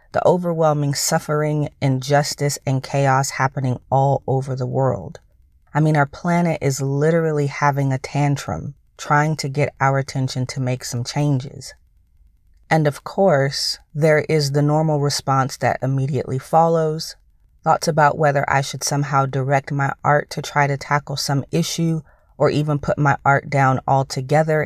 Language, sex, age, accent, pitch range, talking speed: English, female, 30-49, American, 130-155 Hz, 150 wpm